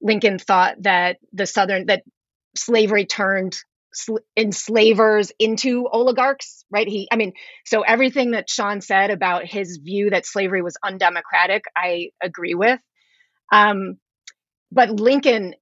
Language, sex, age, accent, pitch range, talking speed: English, female, 30-49, American, 190-235 Hz, 125 wpm